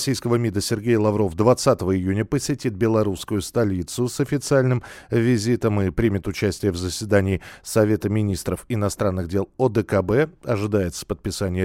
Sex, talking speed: male, 125 wpm